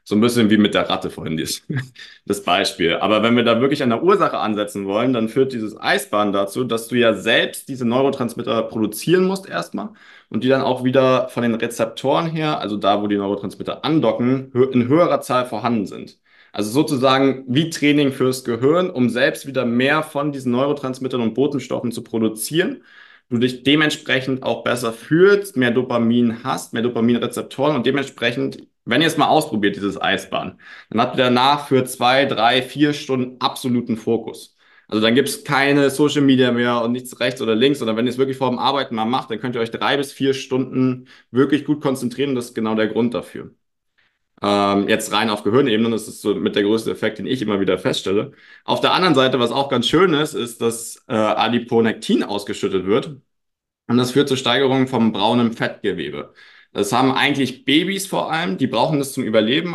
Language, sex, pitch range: German, male, 115-135 Hz